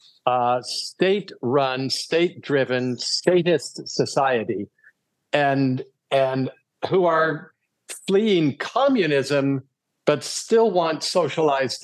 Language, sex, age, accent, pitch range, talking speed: English, male, 50-69, American, 125-155 Hz, 75 wpm